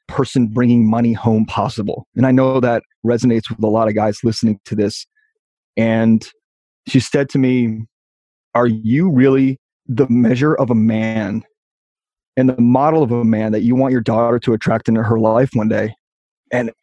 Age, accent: 30-49, American